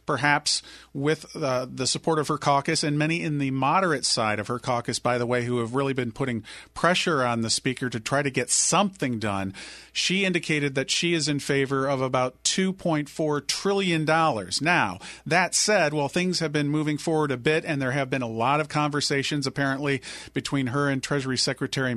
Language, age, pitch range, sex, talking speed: English, 40-59, 135-165 Hz, male, 195 wpm